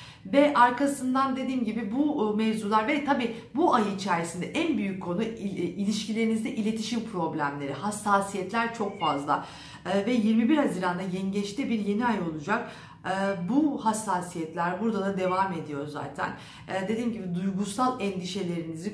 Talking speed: 125 wpm